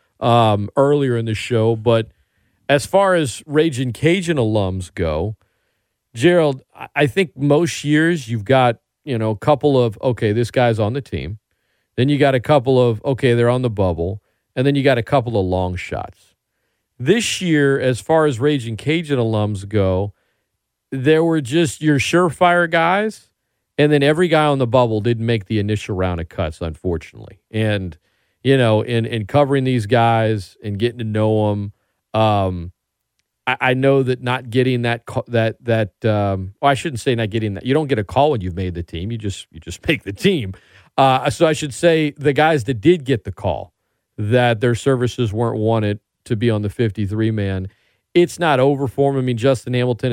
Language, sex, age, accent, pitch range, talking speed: English, male, 40-59, American, 105-140 Hz, 195 wpm